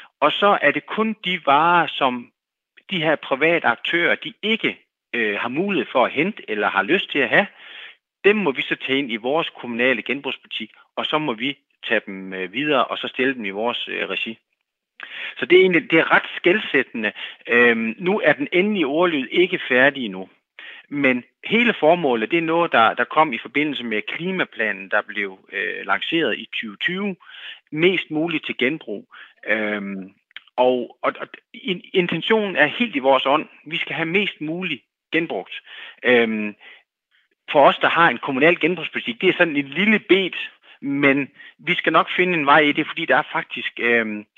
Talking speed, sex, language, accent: 180 wpm, male, Danish, native